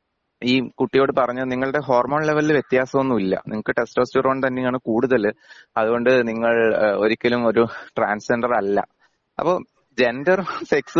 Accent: native